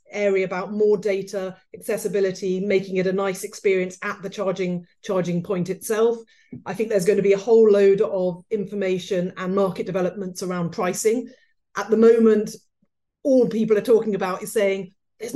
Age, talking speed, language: 40-59, 170 wpm, English